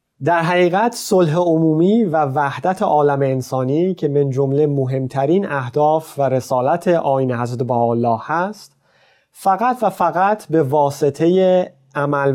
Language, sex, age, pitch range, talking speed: Persian, male, 30-49, 135-170 Hz, 125 wpm